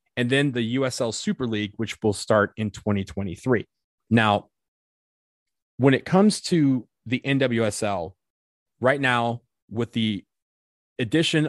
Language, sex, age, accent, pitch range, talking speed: English, male, 30-49, American, 105-125 Hz, 120 wpm